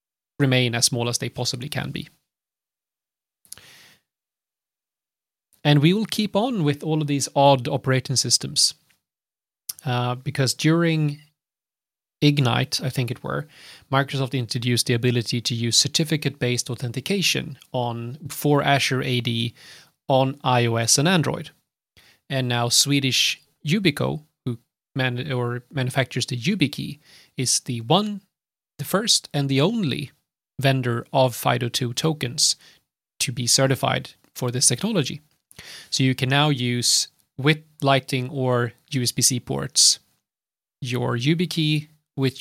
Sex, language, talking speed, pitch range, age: male, English, 120 wpm, 120-145 Hz, 30-49